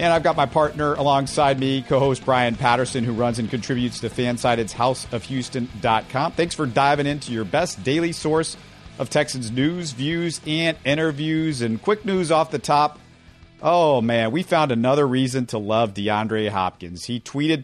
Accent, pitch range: American, 110-135 Hz